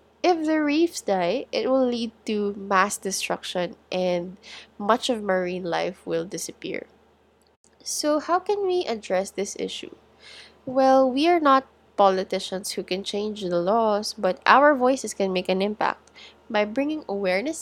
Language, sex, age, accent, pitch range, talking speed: English, female, 20-39, Filipino, 195-270 Hz, 150 wpm